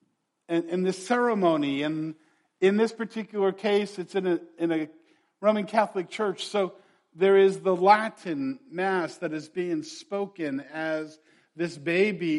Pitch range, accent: 155-205 Hz, American